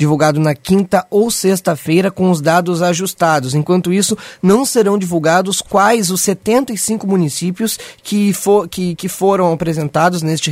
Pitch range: 160-195 Hz